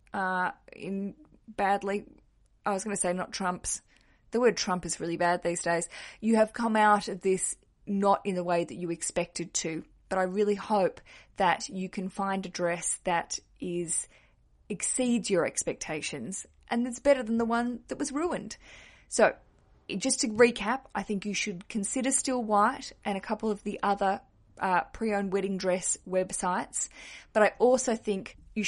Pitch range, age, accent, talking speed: 180-215 Hz, 20-39, Australian, 175 wpm